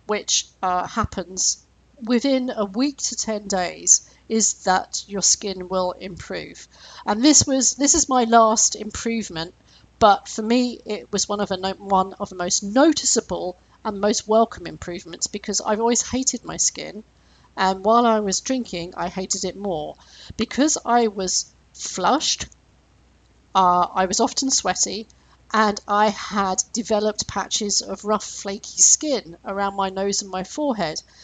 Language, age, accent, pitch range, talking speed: English, 40-59, British, 190-245 Hz, 150 wpm